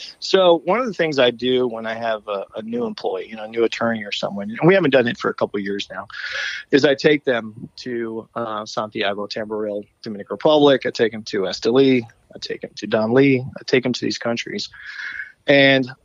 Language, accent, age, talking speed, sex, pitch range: English, American, 30-49, 225 wpm, male, 115-135 Hz